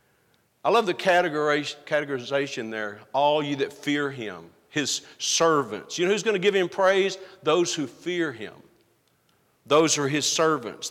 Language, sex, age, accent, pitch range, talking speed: English, male, 50-69, American, 180-245 Hz, 150 wpm